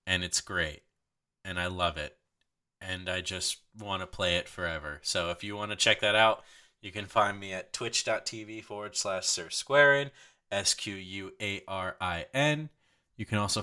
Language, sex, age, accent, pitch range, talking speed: English, male, 20-39, American, 95-130 Hz, 160 wpm